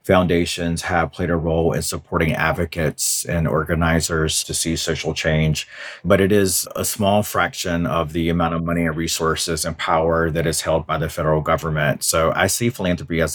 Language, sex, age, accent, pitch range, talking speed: English, male, 30-49, American, 80-90 Hz, 185 wpm